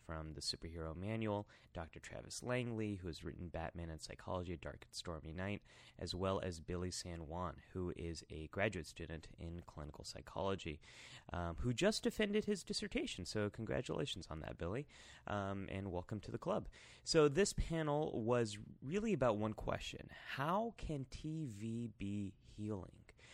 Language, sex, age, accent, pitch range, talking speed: English, male, 30-49, American, 85-110 Hz, 155 wpm